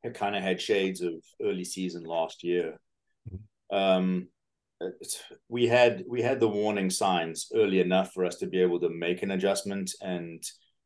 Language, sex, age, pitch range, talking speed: English, male, 30-49, 90-115 Hz, 165 wpm